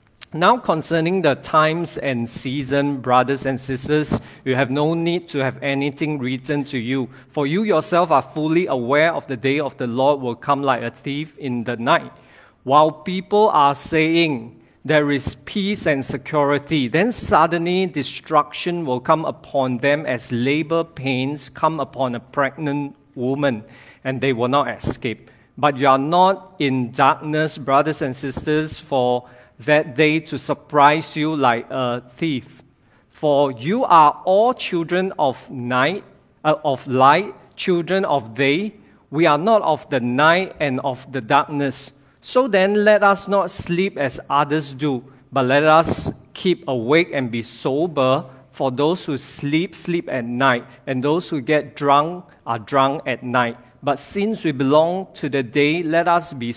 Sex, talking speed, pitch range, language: male, 160 wpm, 130-160 Hz, English